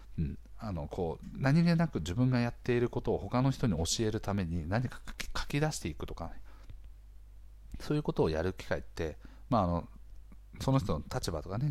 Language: Japanese